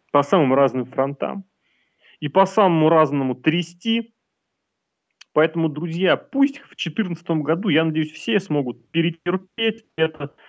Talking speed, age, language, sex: 120 wpm, 30-49, Russian, male